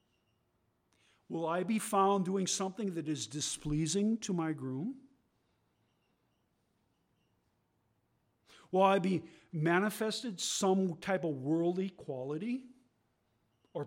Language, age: English, 50-69